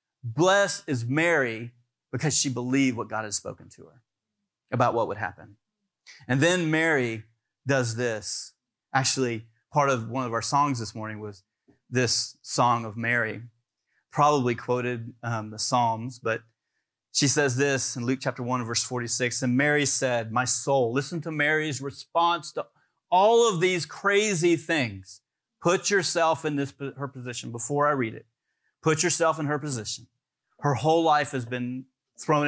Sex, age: male, 30-49